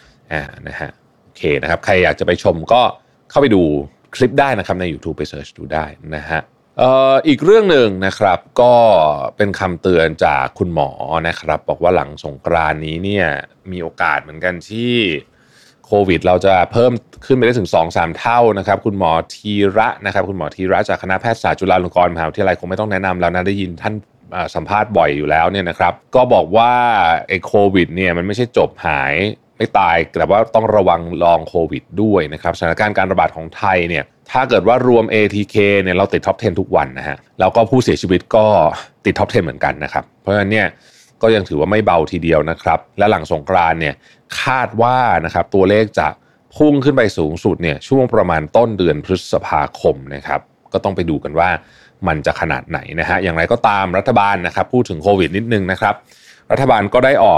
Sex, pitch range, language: male, 85-110 Hz, Thai